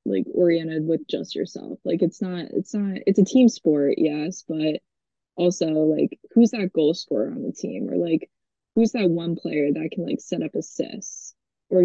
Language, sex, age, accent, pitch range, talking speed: English, female, 20-39, American, 160-190 Hz, 190 wpm